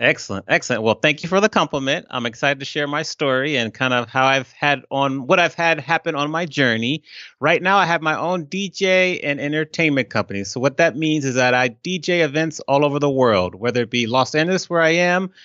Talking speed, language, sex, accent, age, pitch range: 230 wpm, English, male, American, 30-49, 135-170 Hz